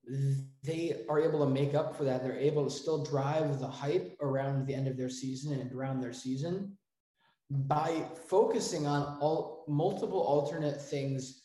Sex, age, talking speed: male, 20-39, 170 wpm